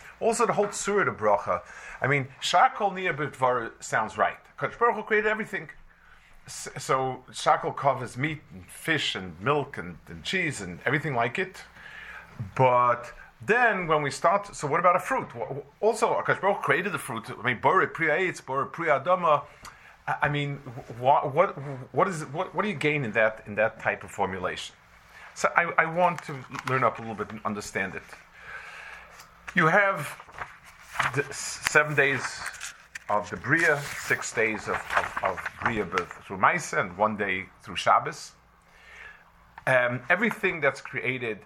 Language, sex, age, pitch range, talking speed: English, male, 40-59, 120-170 Hz, 155 wpm